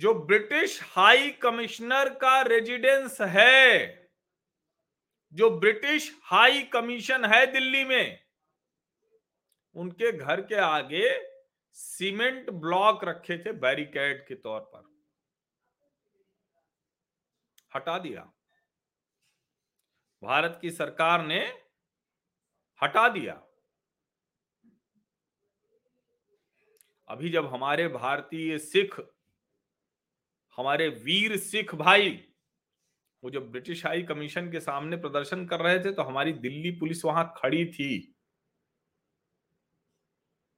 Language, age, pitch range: Hindi, 40-59, 165-275 Hz